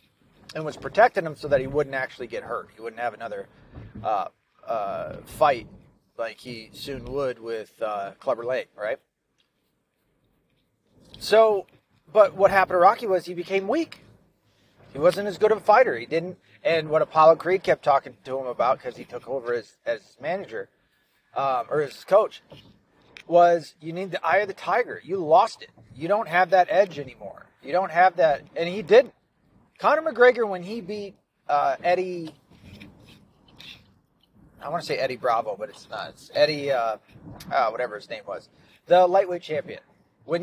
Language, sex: English, male